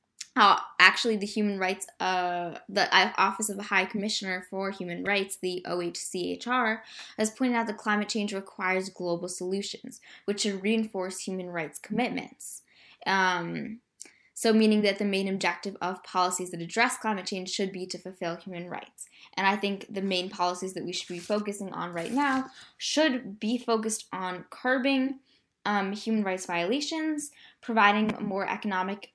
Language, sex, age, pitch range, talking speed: English, female, 10-29, 185-225 Hz, 155 wpm